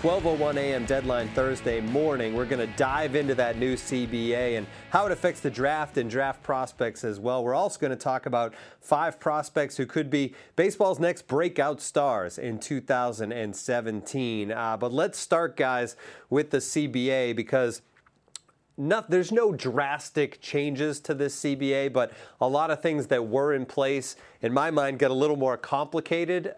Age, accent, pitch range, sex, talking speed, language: 30-49, American, 120-150 Hz, male, 165 wpm, English